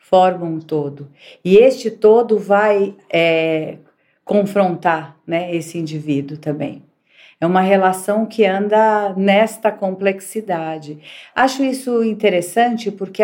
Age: 50-69